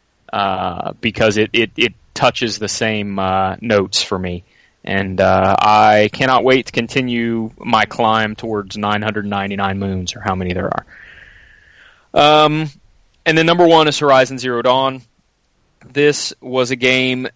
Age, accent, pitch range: 20-39, American, 105-125 Hz